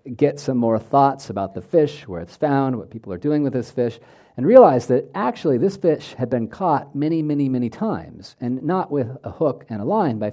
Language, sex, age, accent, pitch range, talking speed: English, male, 50-69, American, 110-145 Hz, 225 wpm